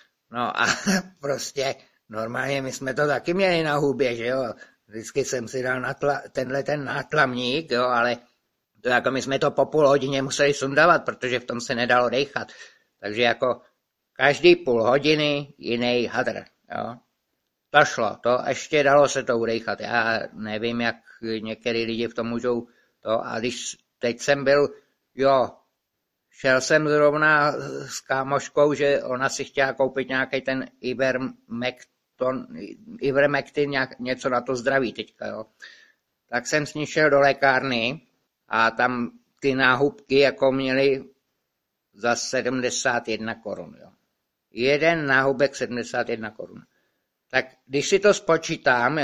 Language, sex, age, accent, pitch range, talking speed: Czech, male, 60-79, native, 125-145 Hz, 140 wpm